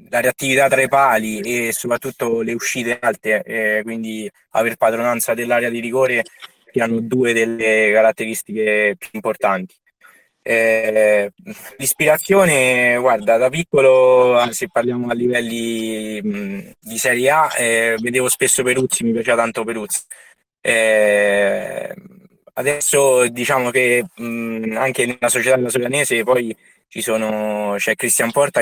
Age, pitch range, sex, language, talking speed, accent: 20-39, 110-130 Hz, male, Italian, 125 wpm, native